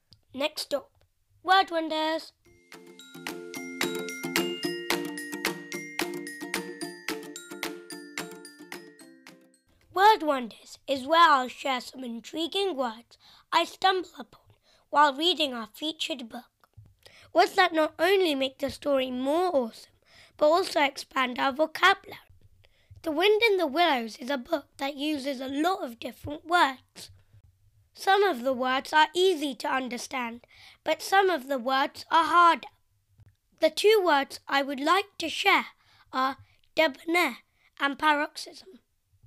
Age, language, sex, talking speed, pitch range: 20-39, English, female, 120 wpm, 245-335 Hz